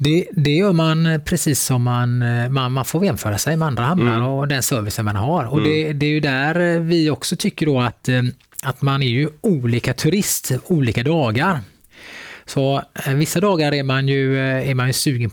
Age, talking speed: 20-39, 190 wpm